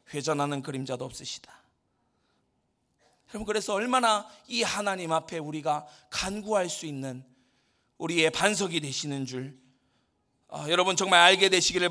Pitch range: 165-275 Hz